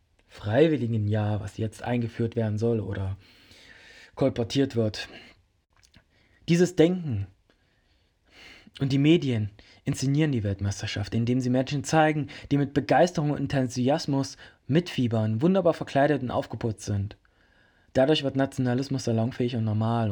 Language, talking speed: German, 115 wpm